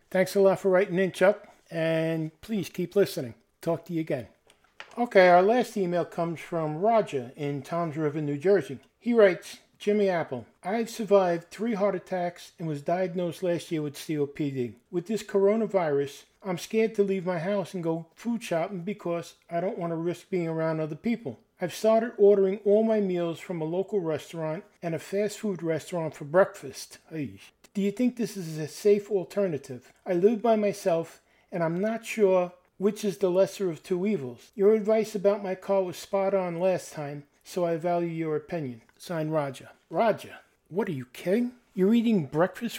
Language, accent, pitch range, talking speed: English, American, 165-205 Hz, 185 wpm